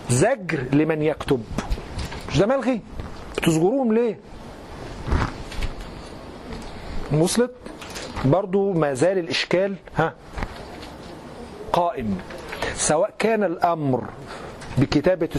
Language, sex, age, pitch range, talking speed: Arabic, male, 40-59, 145-200 Hz, 75 wpm